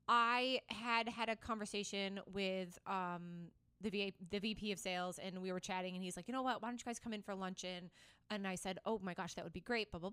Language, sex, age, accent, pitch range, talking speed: English, female, 20-39, American, 200-255 Hz, 250 wpm